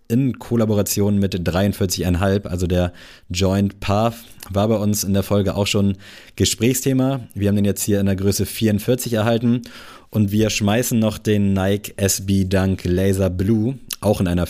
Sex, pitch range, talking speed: male, 95-115 Hz, 165 wpm